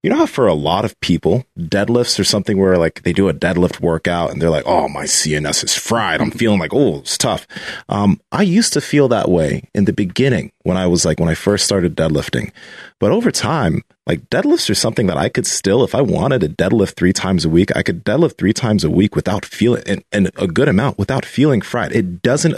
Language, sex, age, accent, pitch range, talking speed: English, male, 30-49, American, 95-140 Hz, 240 wpm